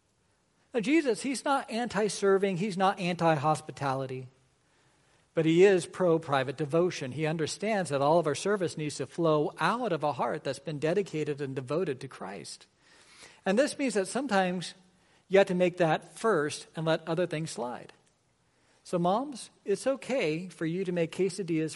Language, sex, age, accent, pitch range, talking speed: English, male, 50-69, American, 145-190 Hz, 165 wpm